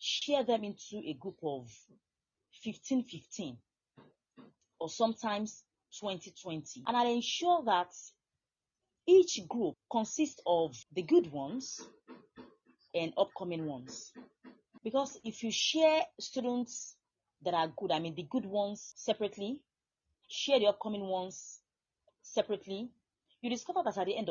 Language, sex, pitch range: English, female, 155-230 Hz